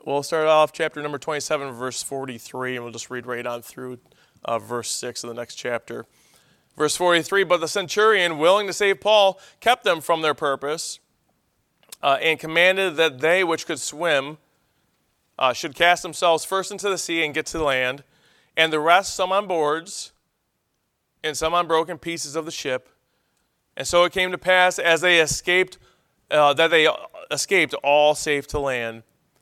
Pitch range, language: 140-170 Hz, English